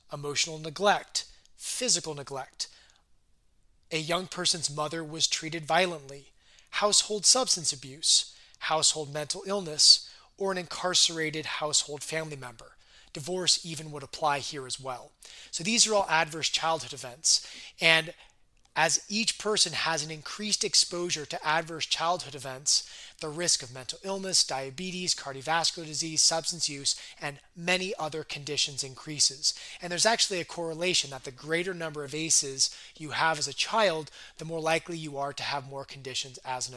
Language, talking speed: English, 150 wpm